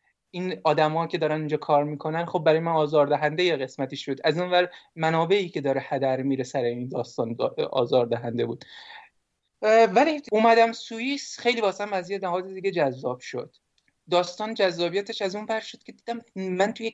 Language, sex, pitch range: Persian, male, 150-185 Hz